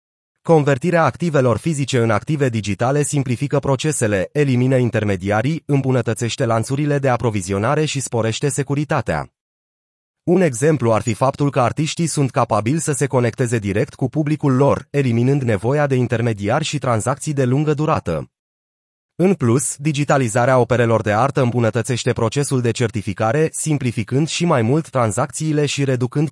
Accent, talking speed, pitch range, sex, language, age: native, 135 wpm, 115-145 Hz, male, Romanian, 30-49